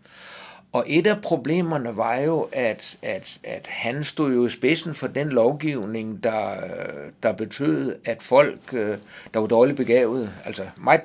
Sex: male